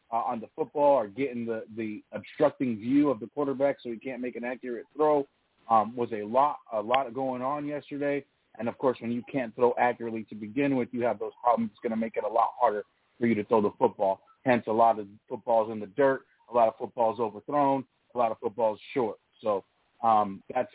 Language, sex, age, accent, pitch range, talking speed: English, male, 30-49, American, 115-135 Hz, 230 wpm